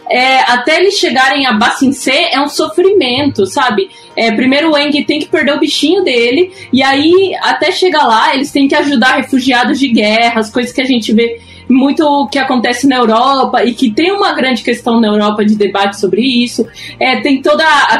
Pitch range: 230-295 Hz